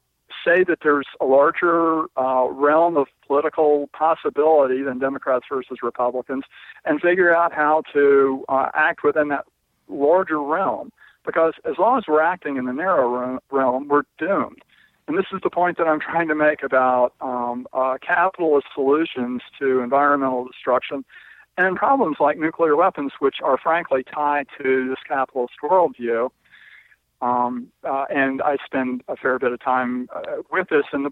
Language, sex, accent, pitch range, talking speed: English, male, American, 130-160 Hz, 160 wpm